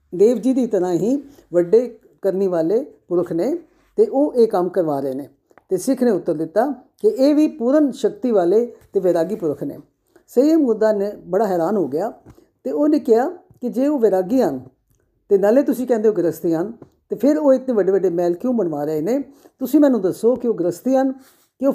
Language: Punjabi